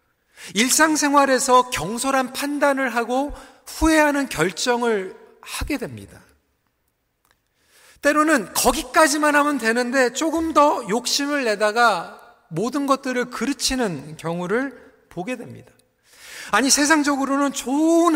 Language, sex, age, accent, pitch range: Korean, male, 40-59, native, 200-275 Hz